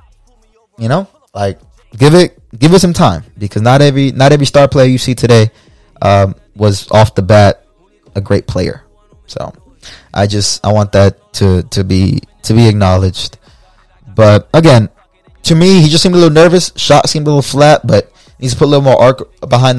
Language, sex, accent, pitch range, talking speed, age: English, male, American, 100-130 Hz, 190 wpm, 20-39